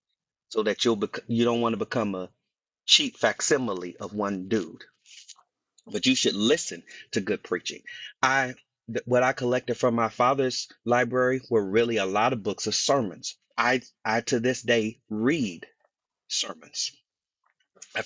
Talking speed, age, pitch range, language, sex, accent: 155 wpm, 30-49, 105-130 Hz, English, male, American